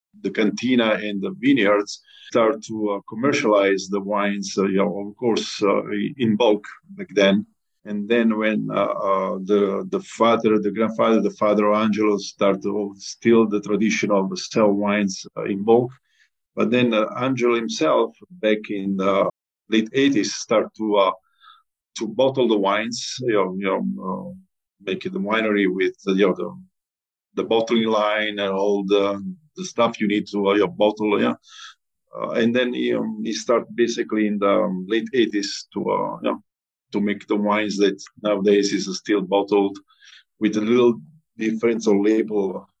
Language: English